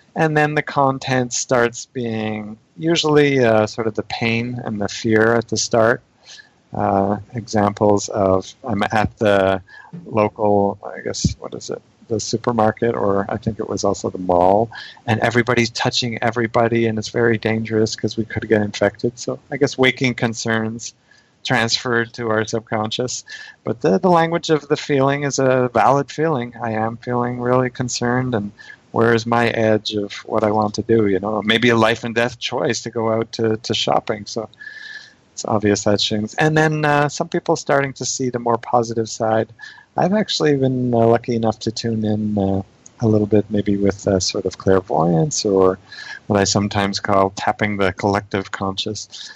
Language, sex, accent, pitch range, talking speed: English, male, American, 100-125 Hz, 175 wpm